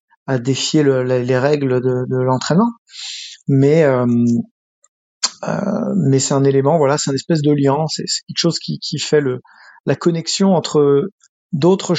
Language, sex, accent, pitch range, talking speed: French, male, French, 135-170 Hz, 170 wpm